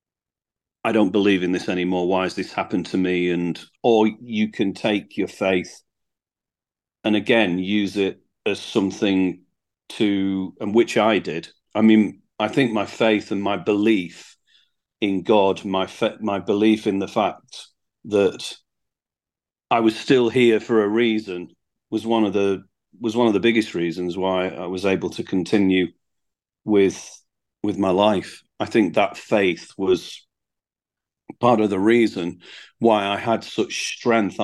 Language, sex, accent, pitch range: English, male, British, 95-115 Hz